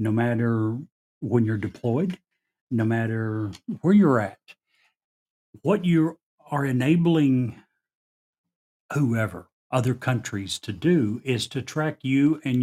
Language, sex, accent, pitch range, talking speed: English, male, American, 115-145 Hz, 115 wpm